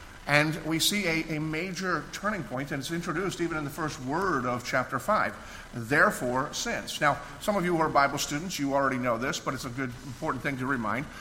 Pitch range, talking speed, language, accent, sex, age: 130-165 Hz, 220 wpm, English, American, male, 50-69